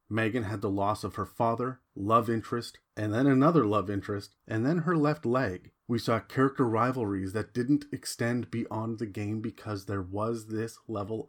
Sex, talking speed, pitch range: male, 180 wpm, 105-130 Hz